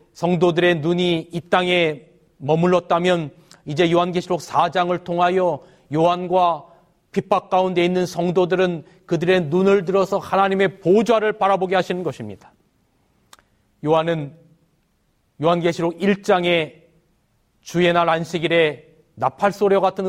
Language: Korean